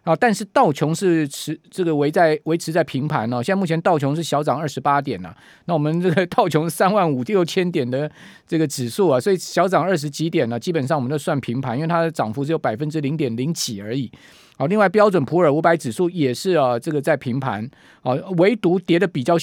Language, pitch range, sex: Chinese, 140-180 Hz, male